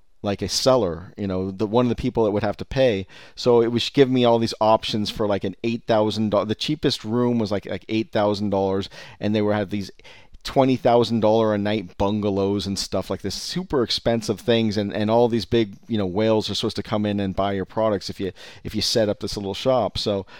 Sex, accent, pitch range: male, American, 100-120 Hz